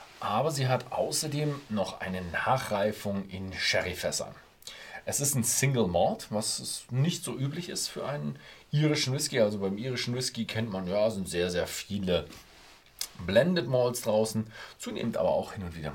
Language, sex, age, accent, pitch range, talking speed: German, male, 40-59, German, 80-115 Hz, 160 wpm